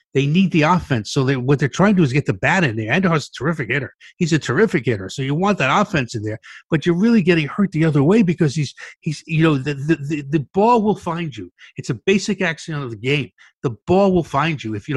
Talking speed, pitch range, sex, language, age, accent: 275 wpm, 145-185 Hz, male, English, 60-79, American